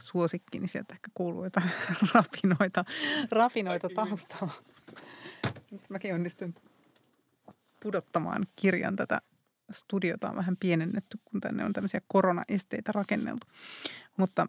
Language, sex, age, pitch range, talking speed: Finnish, female, 30-49, 170-205 Hz, 100 wpm